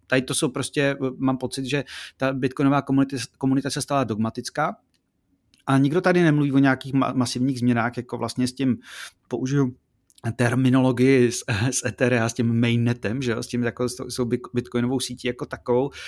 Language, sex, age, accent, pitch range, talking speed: Czech, male, 30-49, native, 120-135 Hz, 165 wpm